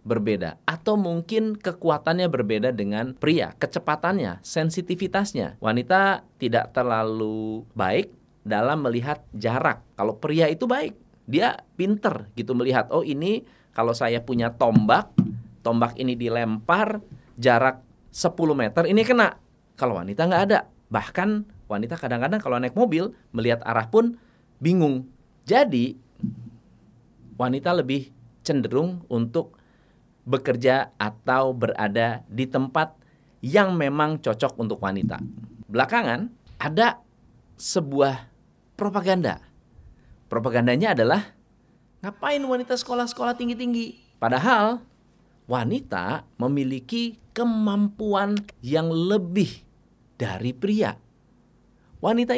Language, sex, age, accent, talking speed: Indonesian, male, 30-49, native, 100 wpm